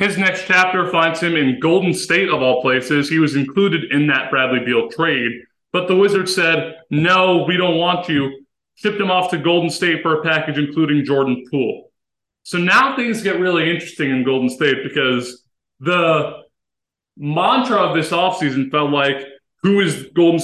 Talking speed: 175 wpm